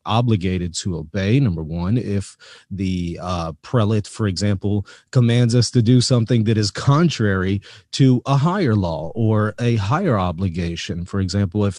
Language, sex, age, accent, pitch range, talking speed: English, male, 30-49, American, 90-110 Hz, 155 wpm